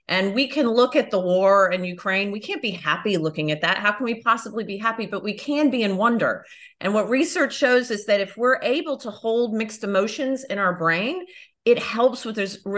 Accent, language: American, English